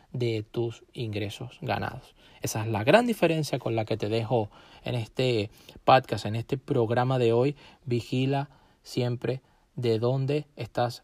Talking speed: 145 wpm